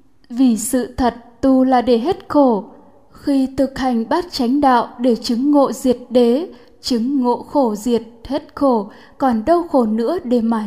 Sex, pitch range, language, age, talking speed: female, 240-280 Hz, Vietnamese, 10-29, 175 wpm